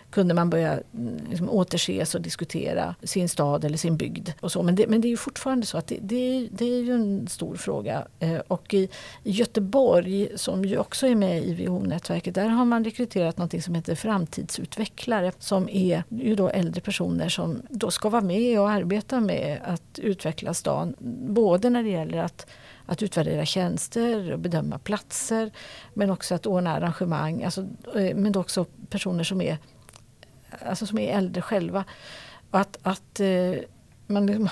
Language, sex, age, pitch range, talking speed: Swedish, female, 50-69, 175-215 Hz, 165 wpm